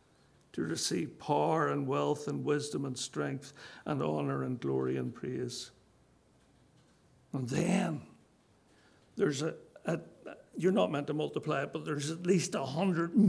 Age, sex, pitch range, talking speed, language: 60-79, male, 145-195 Hz, 145 wpm, English